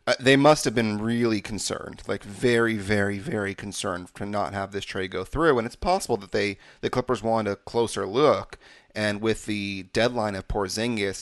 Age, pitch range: 30-49, 100-115 Hz